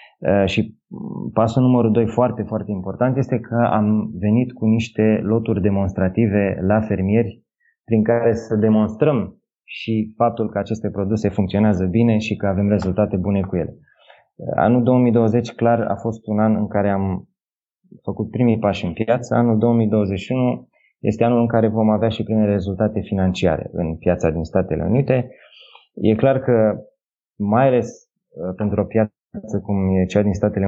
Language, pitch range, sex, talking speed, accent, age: Romanian, 100-115 Hz, male, 155 wpm, native, 20-39